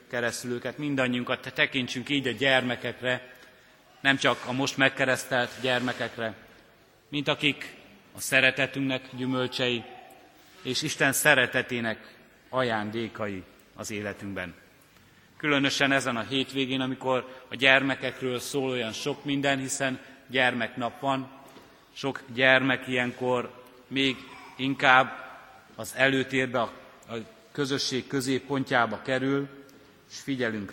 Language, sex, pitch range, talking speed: Hungarian, male, 120-135 Hz, 100 wpm